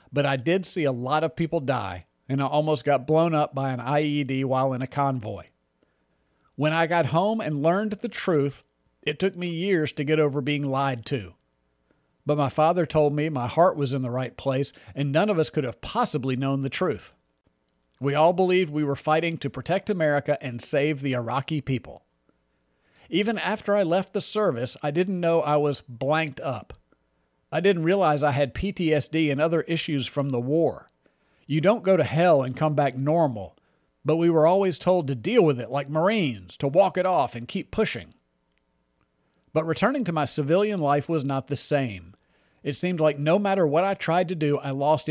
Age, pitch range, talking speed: 40-59, 130-165 Hz, 200 wpm